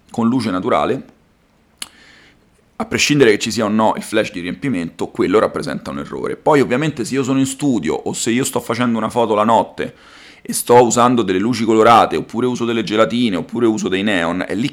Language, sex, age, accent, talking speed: Italian, male, 40-59, native, 205 wpm